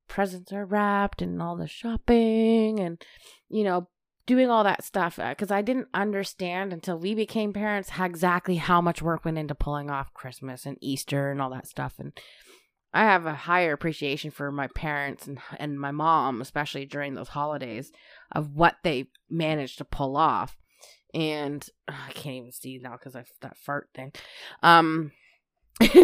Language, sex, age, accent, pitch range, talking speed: English, female, 20-39, American, 145-190 Hz, 175 wpm